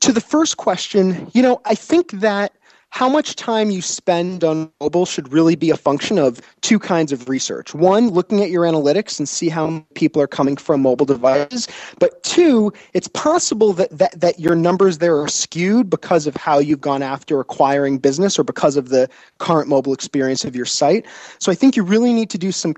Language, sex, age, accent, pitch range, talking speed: English, male, 30-49, American, 145-200 Hz, 210 wpm